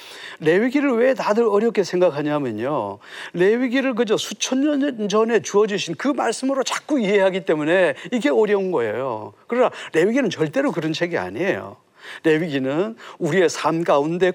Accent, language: native, Korean